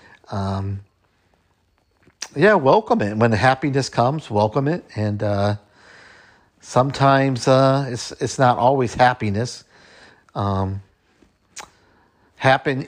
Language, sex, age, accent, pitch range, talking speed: English, male, 50-69, American, 100-125 Hz, 95 wpm